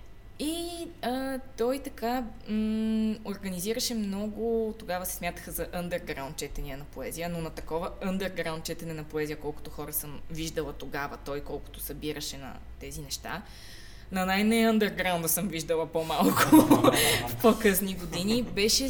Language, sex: Bulgarian, female